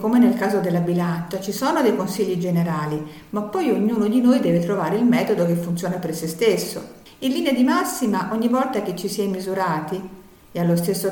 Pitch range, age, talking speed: 170-240 Hz, 50-69, 205 wpm